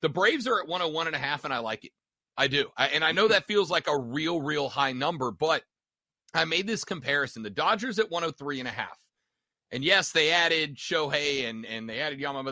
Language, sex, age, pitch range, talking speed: English, male, 30-49, 140-190 Hz, 225 wpm